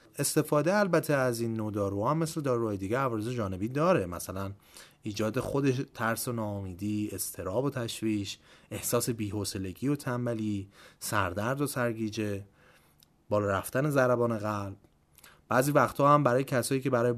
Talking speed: 135 wpm